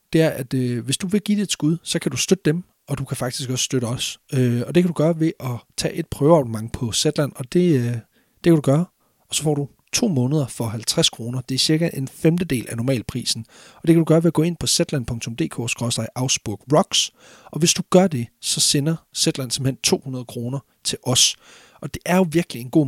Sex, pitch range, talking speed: male, 120-155 Hz, 240 wpm